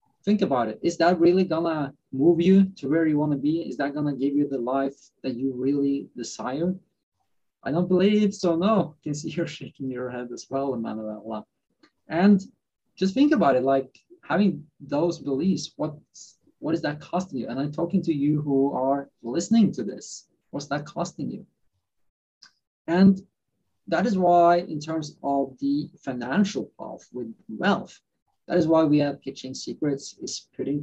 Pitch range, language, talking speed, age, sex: 135-170 Hz, English, 180 wpm, 30-49, male